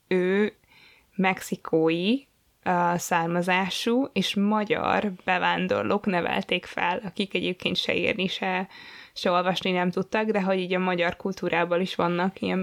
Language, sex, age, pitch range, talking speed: Hungarian, female, 20-39, 180-205 Hz, 125 wpm